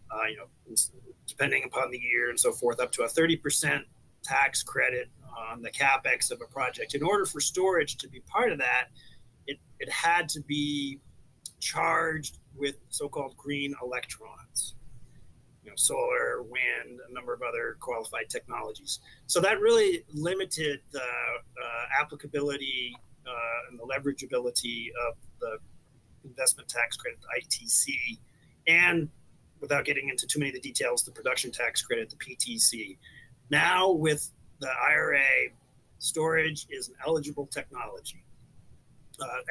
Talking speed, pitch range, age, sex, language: 145 wpm, 135-180 Hz, 40-59, male, English